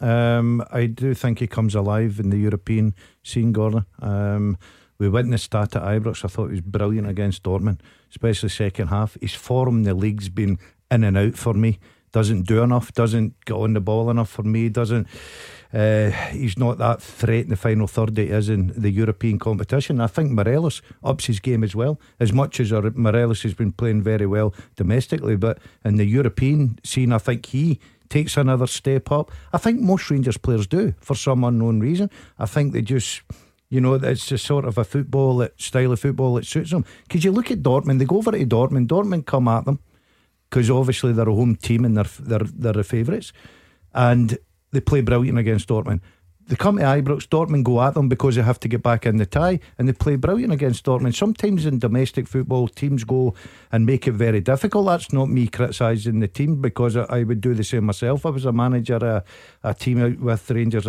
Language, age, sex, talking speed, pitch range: English, 50-69, male, 210 wpm, 110-130 Hz